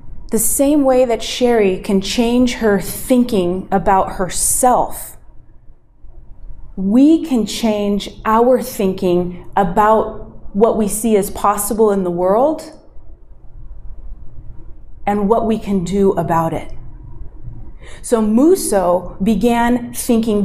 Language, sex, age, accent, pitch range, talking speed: English, female, 30-49, American, 200-250 Hz, 105 wpm